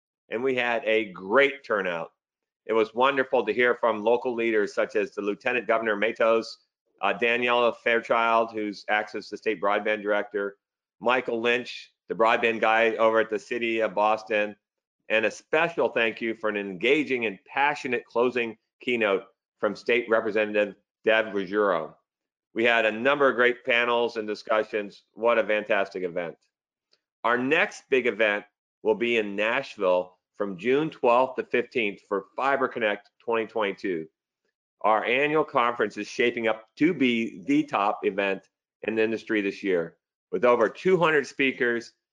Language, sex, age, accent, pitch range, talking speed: English, male, 40-59, American, 105-120 Hz, 150 wpm